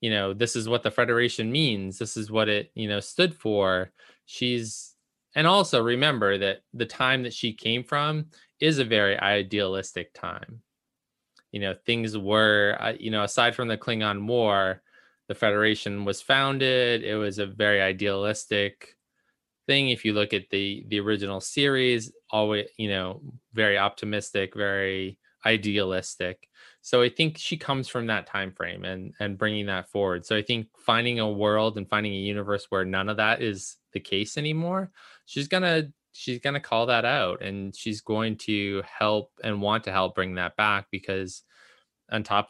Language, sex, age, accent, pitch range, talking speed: English, male, 20-39, American, 100-120 Hz, 175 wpm